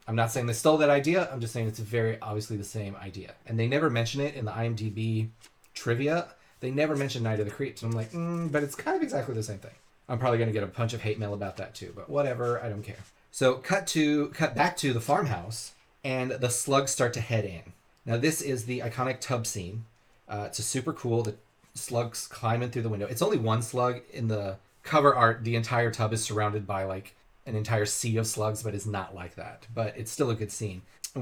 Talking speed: 245 wpm